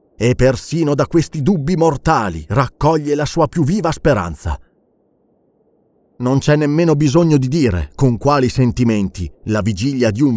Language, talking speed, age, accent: Italian, 145 wpm, 30-49, native